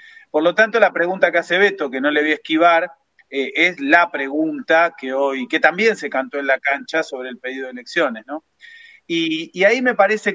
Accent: Argentinian